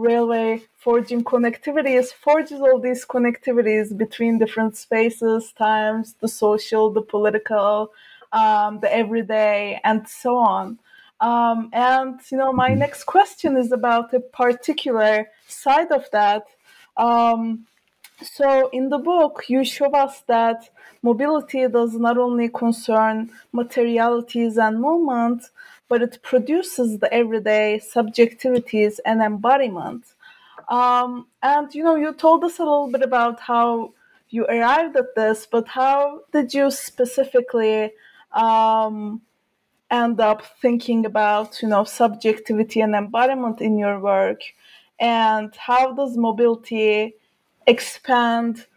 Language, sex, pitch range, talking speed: English, female, 220-260 Hz, 125 wpm